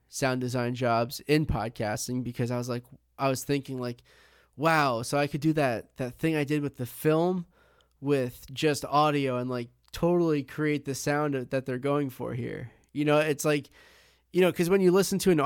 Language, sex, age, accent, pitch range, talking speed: English, male, 20-39, American, 125-145 Hz, 200 wpm